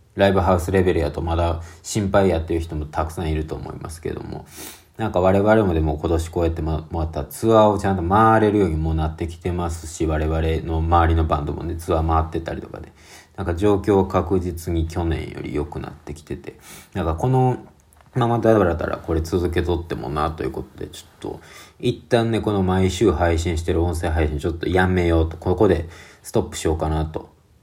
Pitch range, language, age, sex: 80-100 Hz, Japanese, 40-59, male